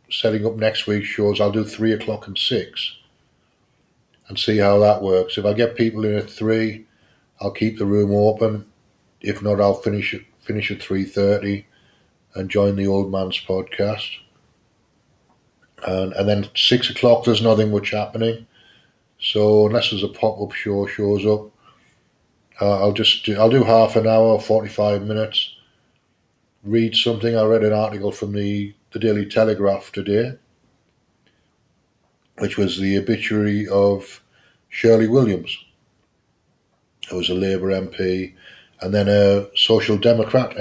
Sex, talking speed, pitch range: male, 150 wpm, 100-110 Hz